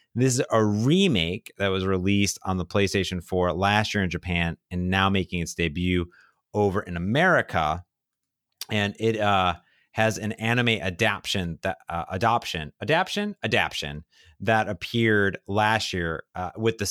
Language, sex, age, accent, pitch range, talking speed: English, male, 30-49, American, 95-120 Hz, 150 wpm